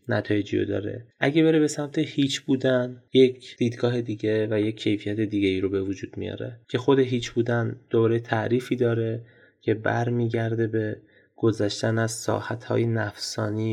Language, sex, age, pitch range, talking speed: English, male, 20-39, 105-125 Hz, 160 wpm